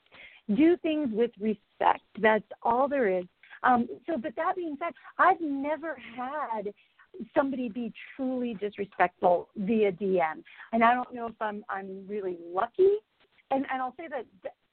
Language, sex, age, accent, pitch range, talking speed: English, female, 50-69, American, 200-265 Hz, 150 wpm